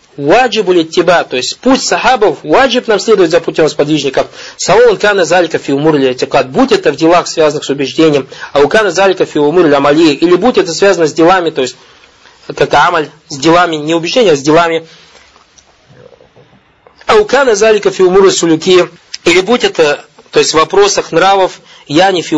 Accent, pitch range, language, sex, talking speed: native, 155-245 Hz, Russian, male, 170 wpm